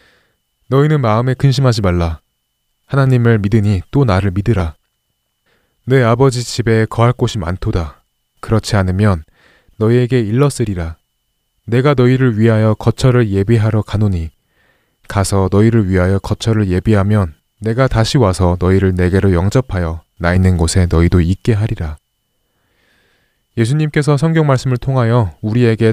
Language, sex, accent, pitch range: Korean, male, native, 90-125 Hz